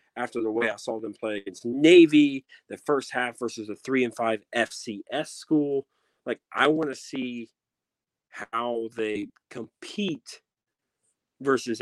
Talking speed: 140 wpm